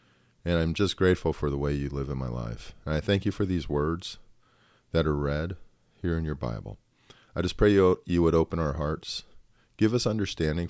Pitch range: 70-95 Hz